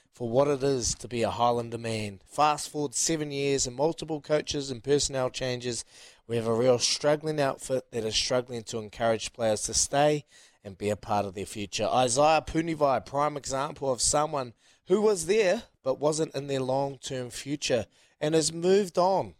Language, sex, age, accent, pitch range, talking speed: English, male, 20-39, Australian, 120-155 Hz, 185 wpm